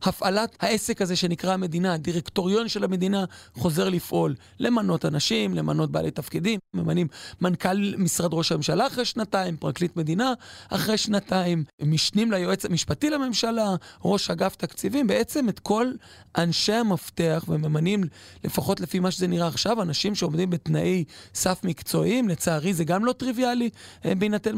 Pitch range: 165-210 Hz